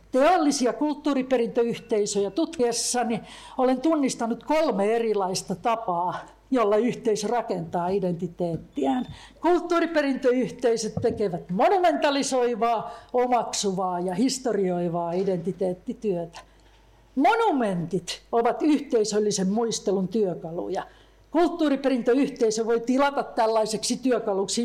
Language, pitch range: Finnish, 200-255 Hz